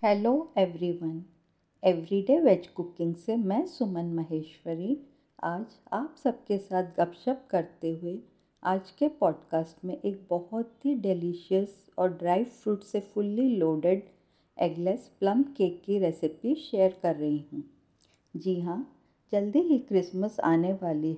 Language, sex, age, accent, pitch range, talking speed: Hindi, female, 50-69, native, 170-215 Hz, 130 wpm